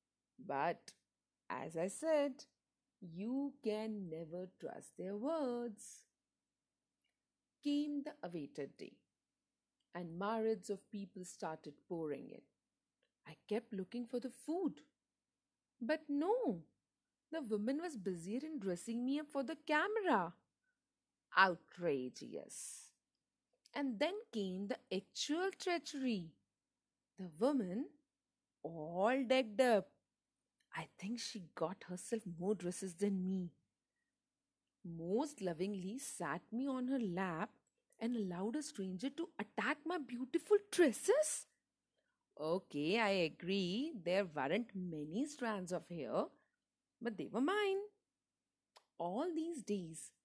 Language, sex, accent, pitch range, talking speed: Hindi, female, native, 180-270 Hz, 110 wpm